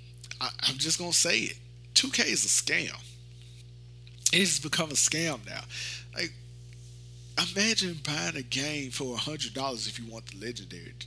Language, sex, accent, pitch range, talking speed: English, male, American, 115-130 Hz, 150 wpm